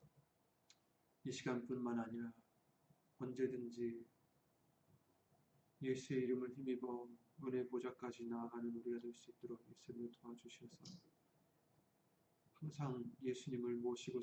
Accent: native